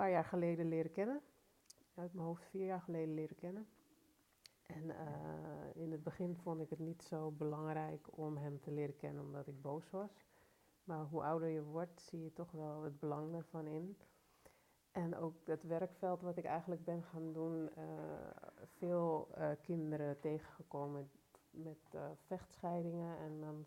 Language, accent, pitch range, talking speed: Dutch, Dutch, 150-170 Hz, 165 wpm